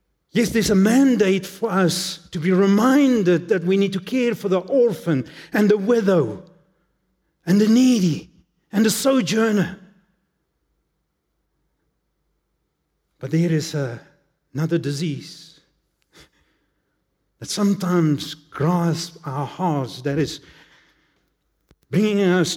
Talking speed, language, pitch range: 105 wpm, English, 150-195 Hz